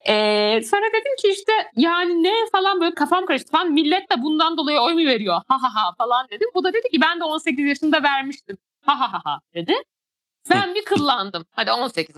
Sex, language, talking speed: female, Turkish, 205 wpm